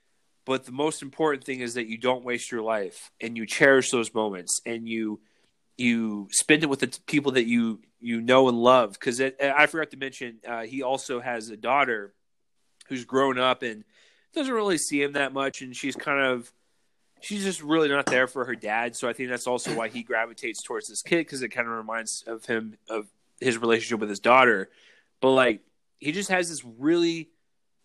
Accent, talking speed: American, 205 wpm